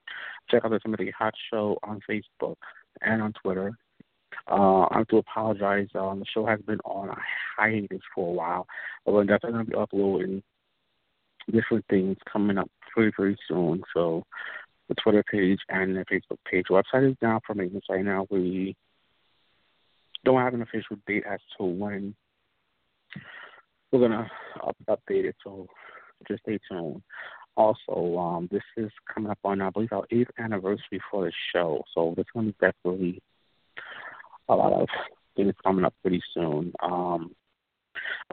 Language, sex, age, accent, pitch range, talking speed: English, male, 50-69, American, 95-110 Hz, 160 wpm